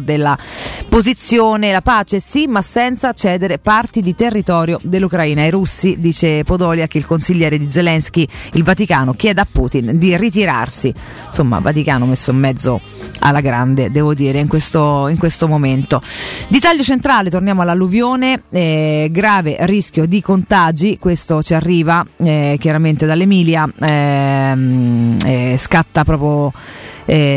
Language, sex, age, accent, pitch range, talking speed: Italian, female, 30-49, native, 145-190 Hz, 135 wpm